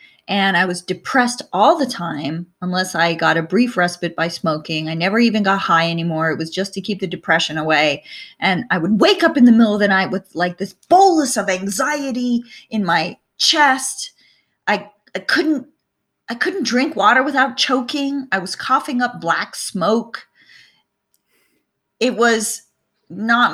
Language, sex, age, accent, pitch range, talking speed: English, female, 30-49, American, 190-315 Hz, 170 wpm